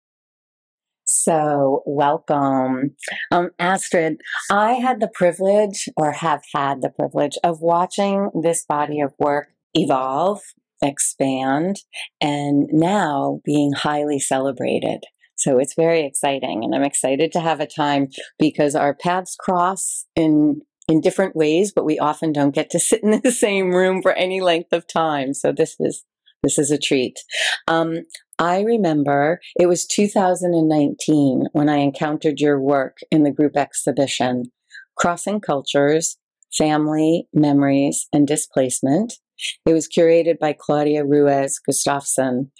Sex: female